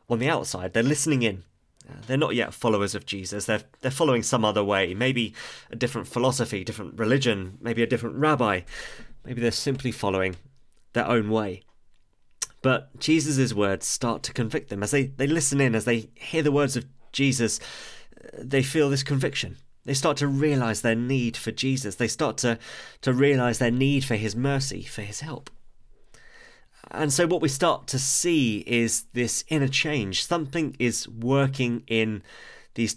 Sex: male